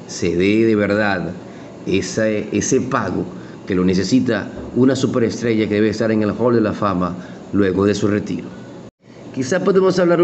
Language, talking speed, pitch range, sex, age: Spanish, 165 wpm, 105-135 Hz, male, 40-59